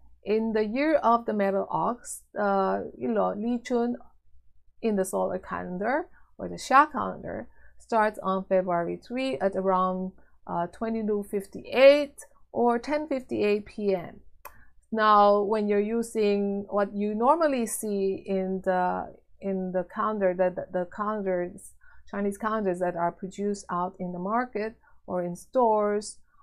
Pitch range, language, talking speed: 185-230 Hz, English, 145 wpm